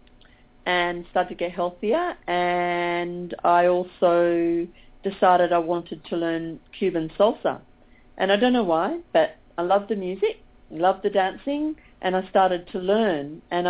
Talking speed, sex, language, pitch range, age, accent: 150 wpm, female, English, 170-195 Hz, 50-69, Australian